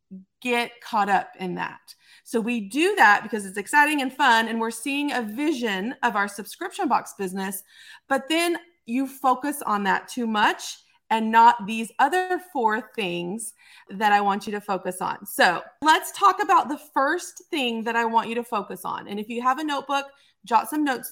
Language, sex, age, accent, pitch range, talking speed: English, female, 30-49, American, 225-300 Hz, 195 wpm